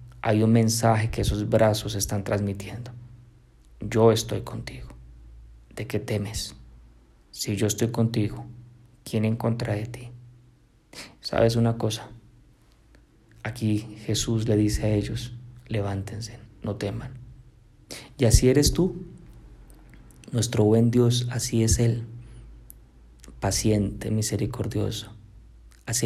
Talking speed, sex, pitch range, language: 110 wpm, male, 105-125 Hz, Spanish